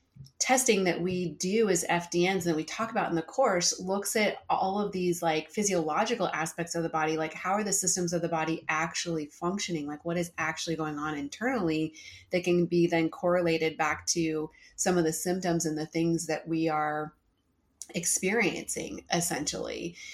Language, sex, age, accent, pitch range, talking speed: English, female, 30-49, American, 165-185 Hz, 180 wpm